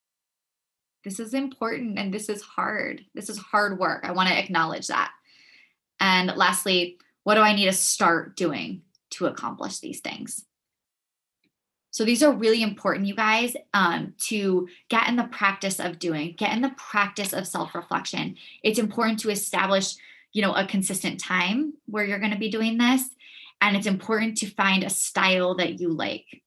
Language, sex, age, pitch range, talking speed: English, female, 20-39, 185-220 Hz, 170 wpm